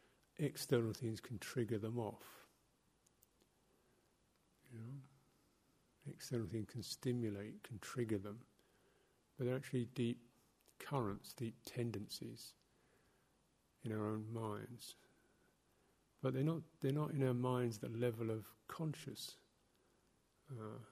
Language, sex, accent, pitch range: English, male, British, 105-125 Hz